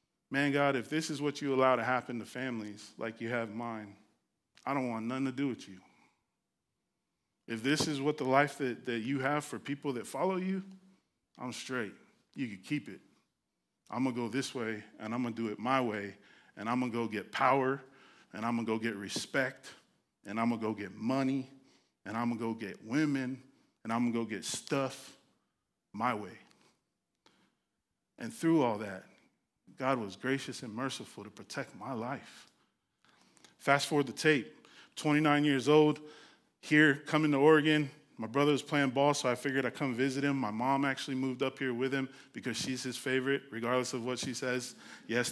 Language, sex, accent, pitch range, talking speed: English, male, American, 115-140 Hz, 200 wpm